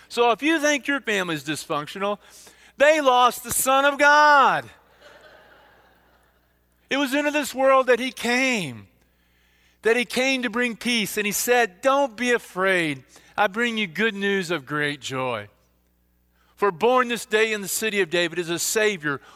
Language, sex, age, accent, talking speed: English, male, 40-59, American, 165 wpm